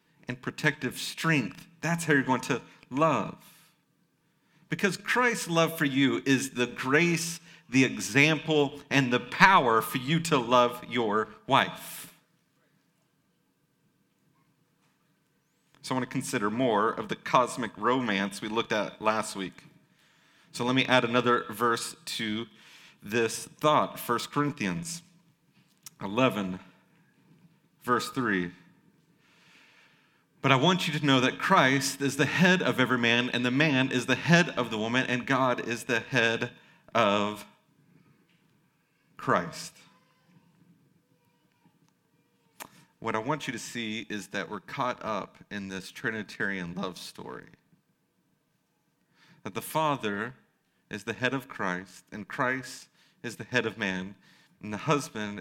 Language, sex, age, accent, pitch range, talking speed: English, male, 40-59, American, 115-160 Hz, 130 wpm